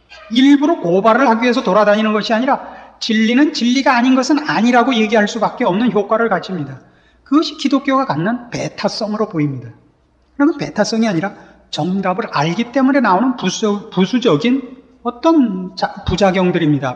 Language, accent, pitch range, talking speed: English, Korean, 190-290 Hz, 110 wpm